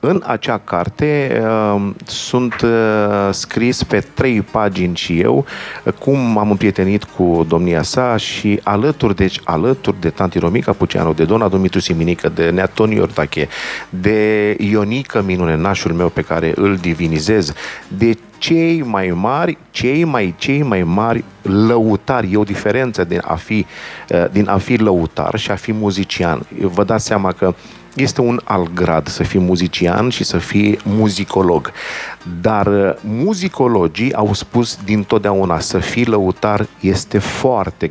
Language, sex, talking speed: Romanian, male, 140 wpm